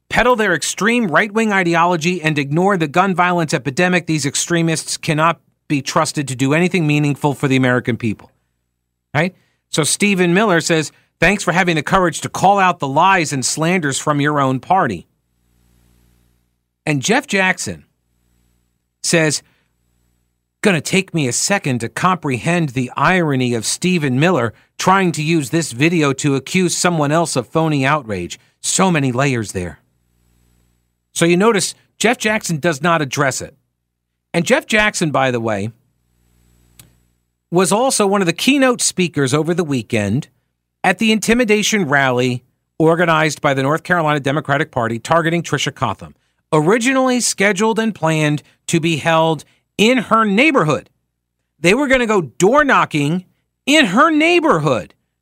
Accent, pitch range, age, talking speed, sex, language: American, 120-185 Hz, 40-59, 150 wpm, male, English